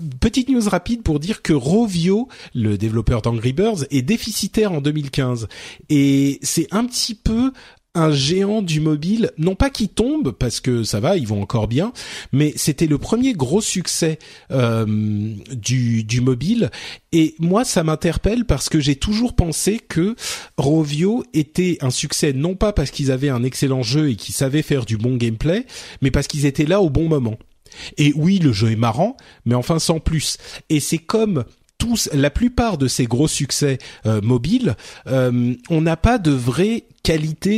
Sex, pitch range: male, 125-180 Hz